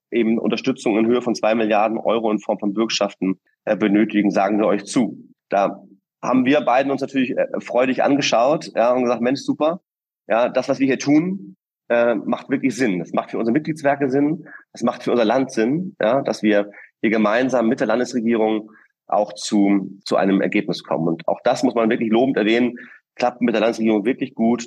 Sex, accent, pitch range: male, German, 105-125 Hz